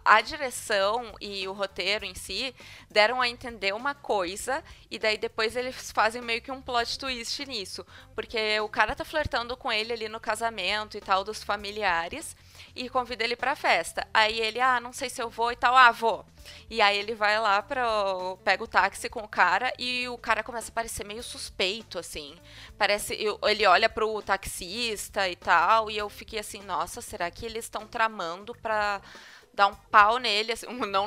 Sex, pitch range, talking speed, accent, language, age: female, 200-240 Hz, 190 wpm, Brazilian, Portuguese, 20-39